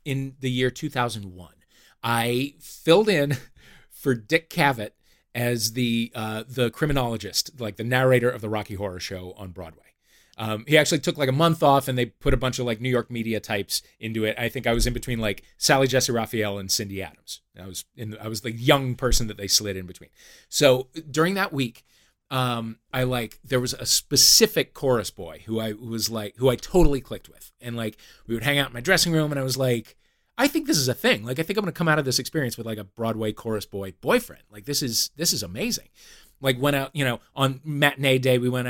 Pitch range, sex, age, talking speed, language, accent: 110-135 Hz, male, 30-49, 230 wpm, English, American